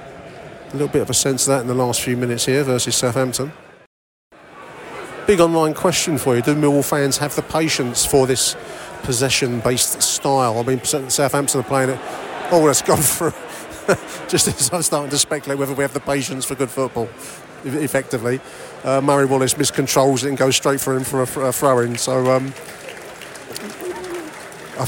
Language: English